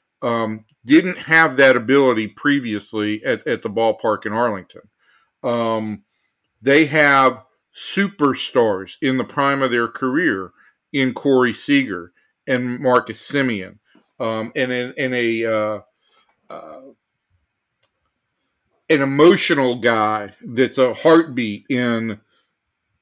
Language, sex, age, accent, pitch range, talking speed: English, male, 50-69, American, 110-145 Hz, 105 wpm